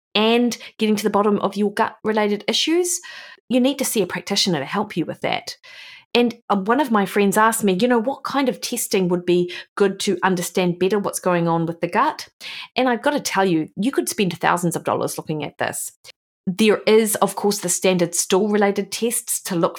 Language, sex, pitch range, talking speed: English, female, 175-225 Hz, 215 wpm